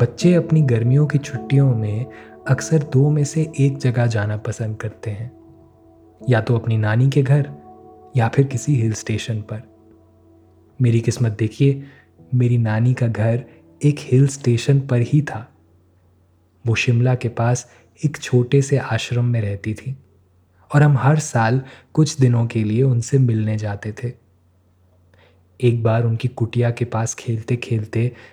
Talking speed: 155 wpm